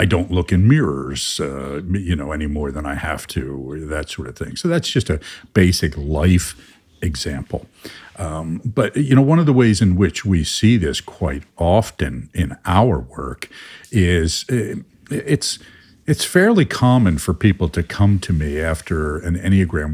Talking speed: 175 wpm